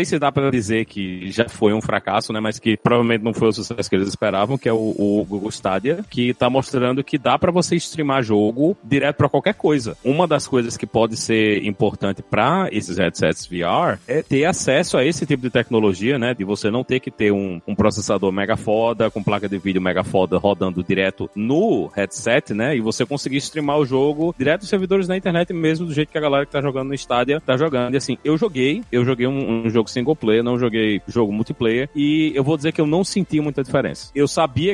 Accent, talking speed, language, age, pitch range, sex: Brazilian, 230 wpm, Portuguese, 30-49, 110-140 Hz, male